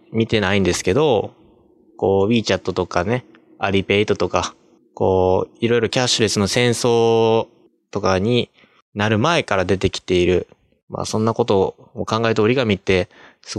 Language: Japanese